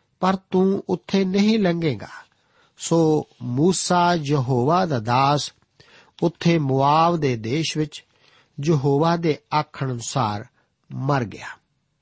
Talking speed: 100 wpm